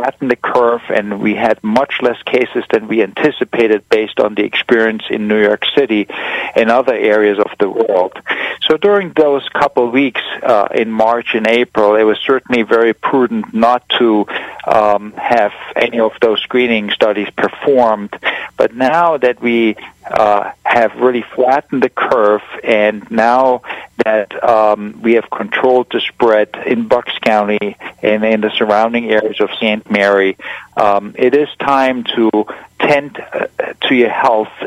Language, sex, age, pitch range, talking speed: English, male, 50-69, 105-120 Hz, 155 wpm